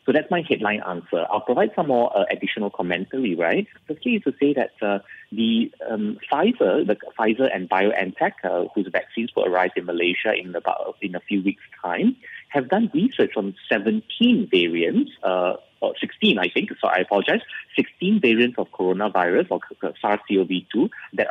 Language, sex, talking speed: English, male, 170 wpm